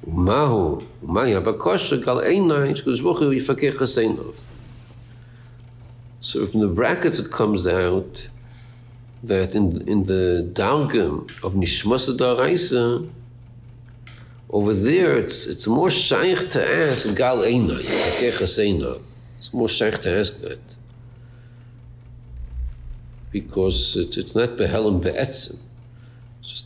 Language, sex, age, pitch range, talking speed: English, male, 60-79, 105-120 Hz, 90 wpm